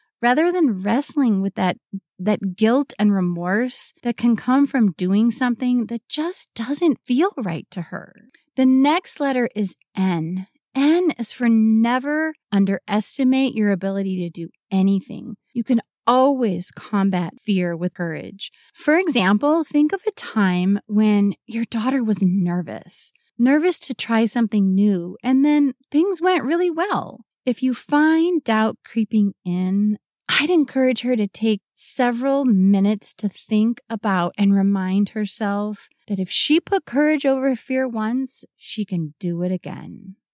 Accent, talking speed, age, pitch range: American, 145 wpm, 30-49, 200-275 Hz